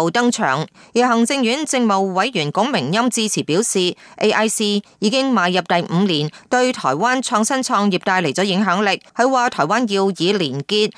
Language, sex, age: Chinese, female, 30-49